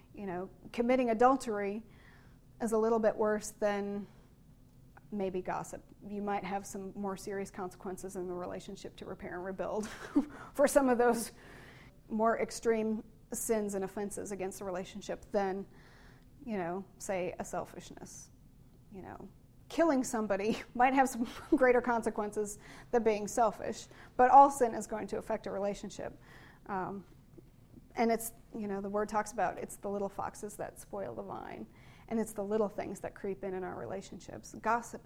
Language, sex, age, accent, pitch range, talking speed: English, female, 30-49, American, 190-230 Hz, 160 wpm